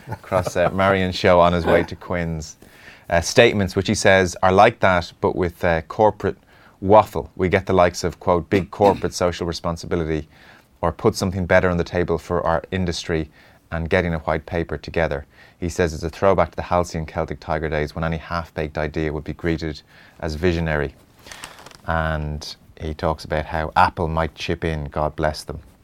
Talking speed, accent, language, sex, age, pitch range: 185 wpm, Irish, English, male, 30-49, 80-95 Hz